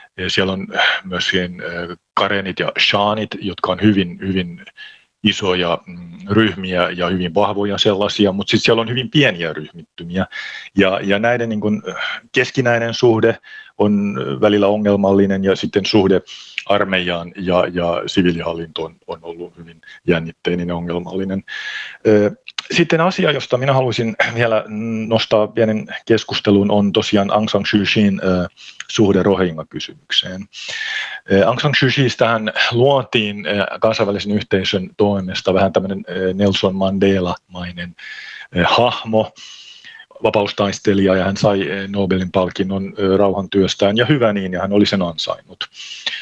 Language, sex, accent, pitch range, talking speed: Finnish, male, native, 95-110 Hz, 120 wpm